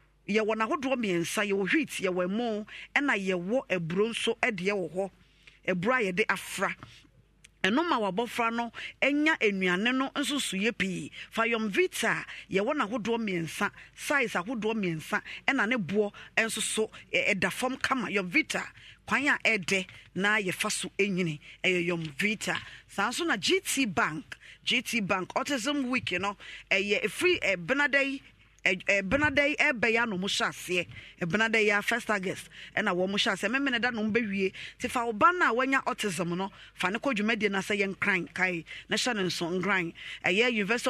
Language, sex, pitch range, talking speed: English, female, 185-245 Hz, 175 wpm